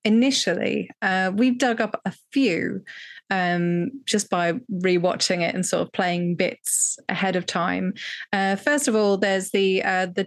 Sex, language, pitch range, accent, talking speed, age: female, English, 190-245 Hz, British, 160 wpm, 20-39